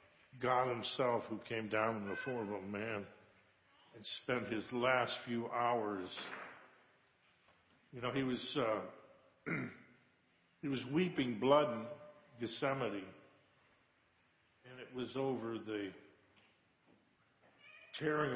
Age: 50-69